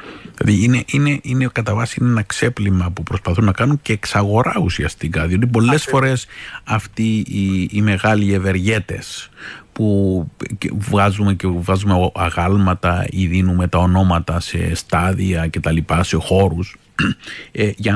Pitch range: 95-120 Hz